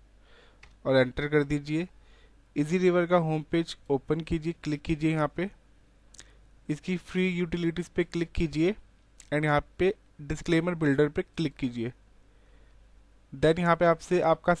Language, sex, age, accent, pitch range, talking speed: Hindi, male, 20-39, native, 140-165 Hz, 140 wpm